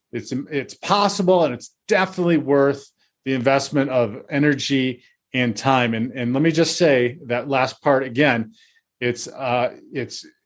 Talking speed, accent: 150 wpm, American